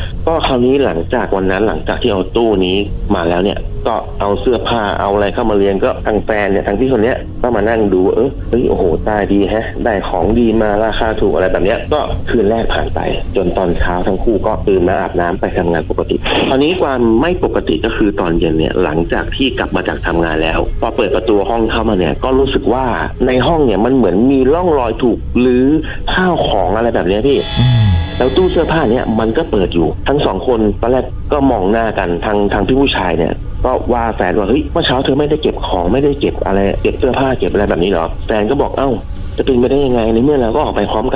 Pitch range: 95-120 Hz